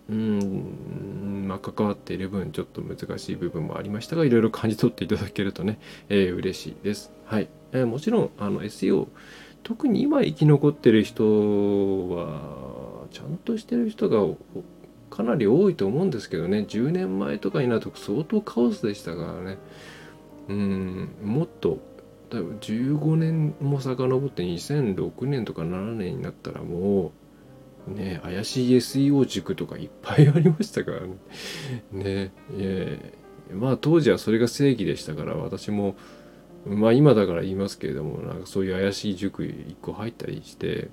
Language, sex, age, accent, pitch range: Japanese, male, 20-39, native, 95-140 Hz